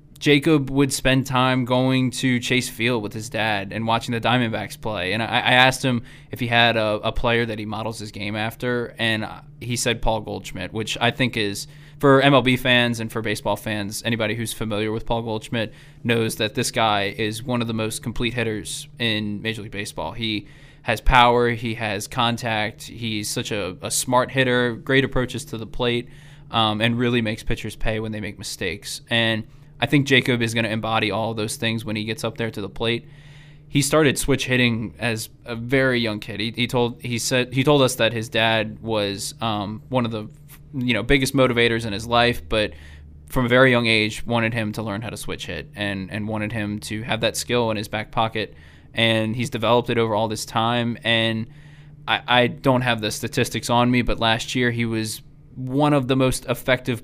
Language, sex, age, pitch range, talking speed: English, male, 20-39, 110-130 Hz, 210 wpm